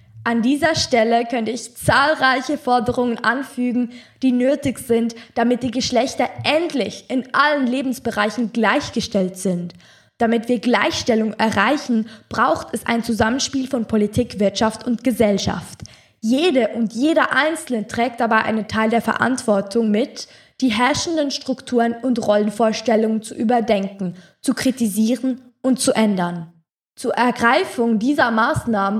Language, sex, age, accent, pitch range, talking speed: German, female, 20-39, German, 210-255 Hz, 125 wpm